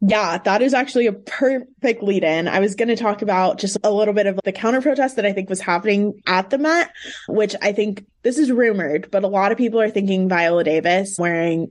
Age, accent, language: 20-39, American, English